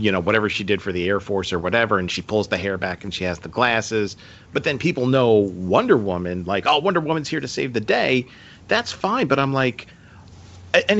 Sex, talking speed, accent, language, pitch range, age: male, 235 wpm, American, English, 95-125 Hz, 40-59